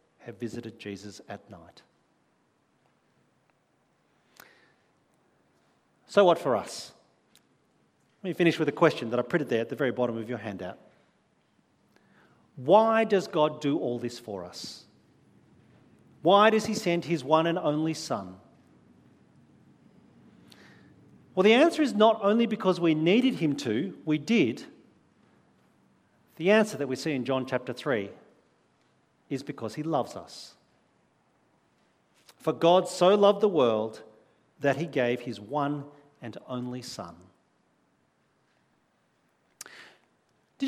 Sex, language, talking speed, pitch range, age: male, English, 125 wpm, 130-215 Hz, 50-69